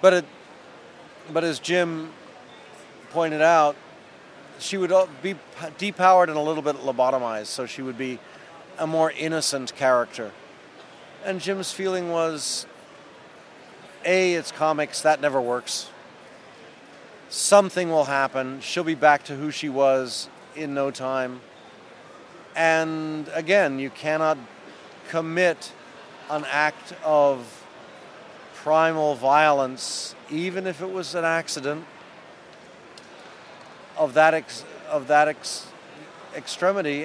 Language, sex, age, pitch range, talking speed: English, male, 40-59, 140-170 Hz, 115 wpm